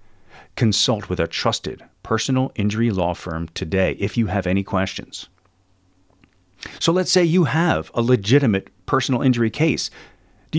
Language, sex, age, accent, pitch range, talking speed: English, male, 40-59, American, 95-135 Hz, 140 wpm